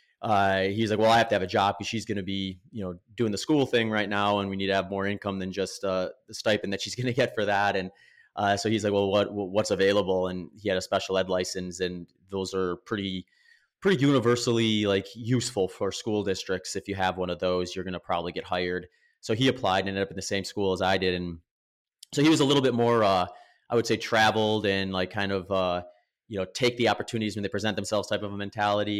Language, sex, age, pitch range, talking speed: English, male, 30-49, 95-110 Hz, 260 wpm